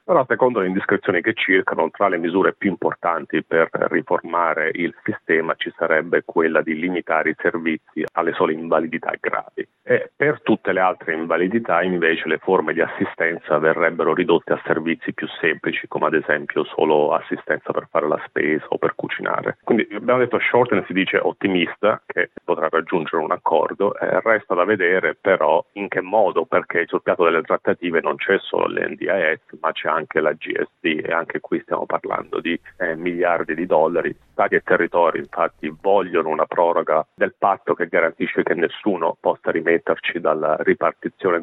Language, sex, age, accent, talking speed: Italian, male, 40-59, native, 170 wpm